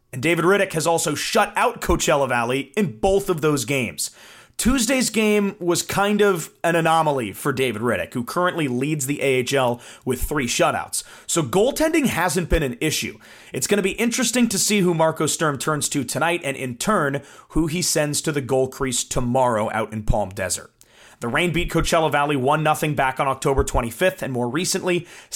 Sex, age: male, 30-49